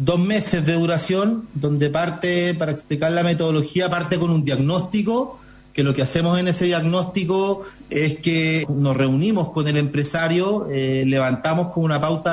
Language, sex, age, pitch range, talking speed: Spanish, male, 40-59, 150-195 Hz, 160 wpm